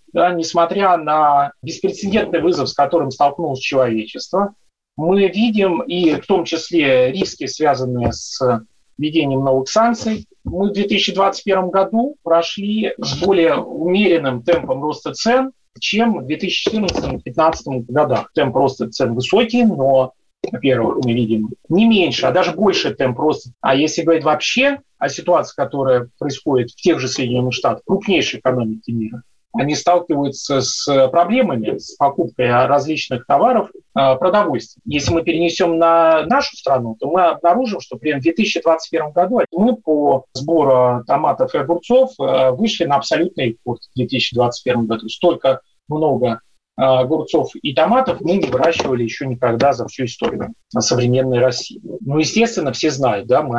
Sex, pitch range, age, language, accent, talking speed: male, 130-180 Hz, 30-49, Russian, native, 135 wpm